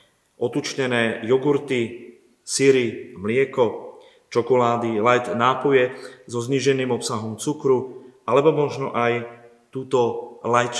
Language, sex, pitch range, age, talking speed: Slovak, male, 120-160 Hz, 40-59, 90 wpm